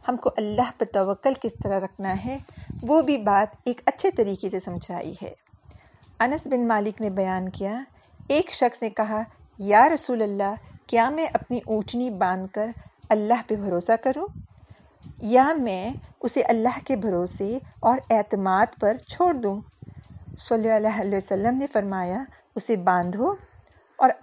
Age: 50-69